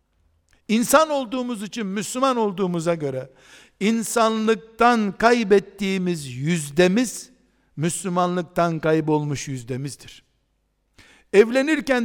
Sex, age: male, 60-79